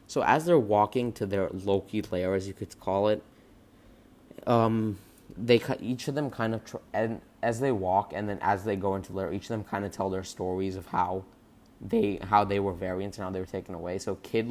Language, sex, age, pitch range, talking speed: English, male, 20-39, 95-115 Hz, 230 wpm